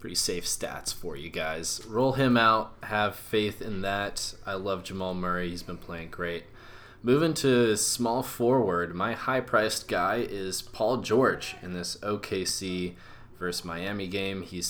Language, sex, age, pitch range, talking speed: English, male, 20-39, 90-110 Hz, 155 wpm